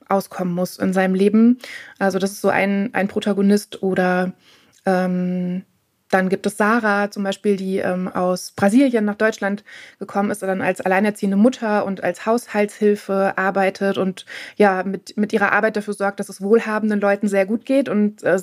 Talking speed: 175 wpm